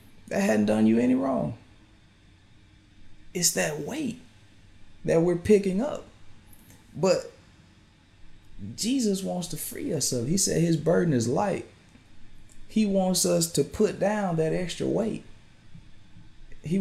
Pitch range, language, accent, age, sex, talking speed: 105-170 Hz, English, American, 30-49, male, 130 wpm